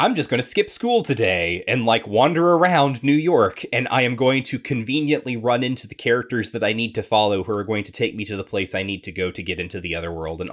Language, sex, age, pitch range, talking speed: English, male, 20-39, 95-115 Hz, 275 wpm